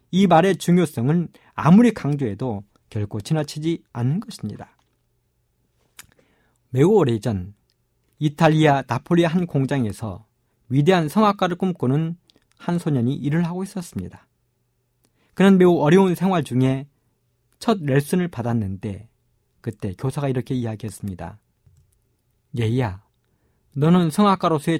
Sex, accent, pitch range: male, native, 120-175 Hz